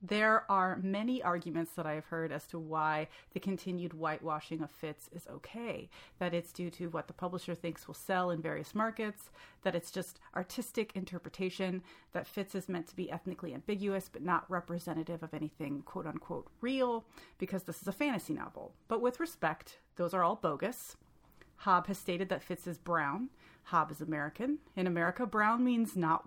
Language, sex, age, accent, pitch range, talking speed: English, female, 30-49, American, 165-195 Hz, 185 wpm